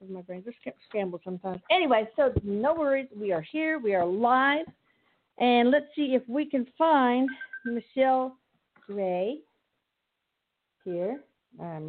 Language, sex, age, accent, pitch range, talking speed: English, female, 50-69, American, 200-280 Hz, 125 wpm